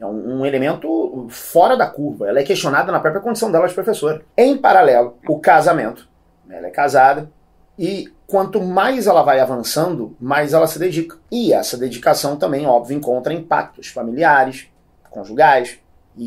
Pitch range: 125-170 Hz